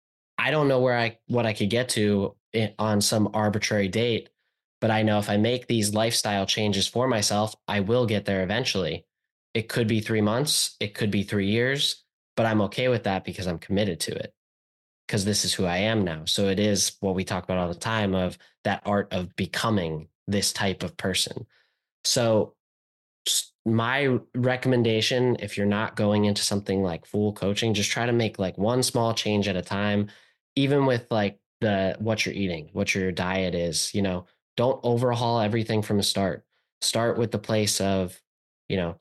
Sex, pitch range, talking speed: male, 95-115 Hz, 190 wpm